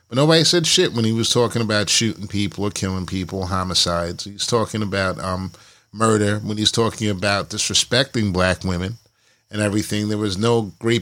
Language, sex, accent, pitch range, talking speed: English, male, American, 105-130 Hz, 180 wpm